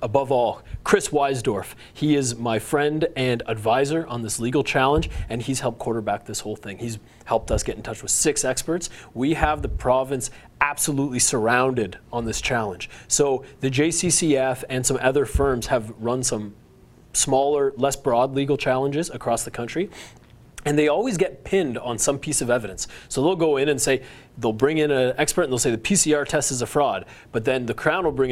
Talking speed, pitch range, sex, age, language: 195 wpm, 120-145 Hz, male, 30-49, English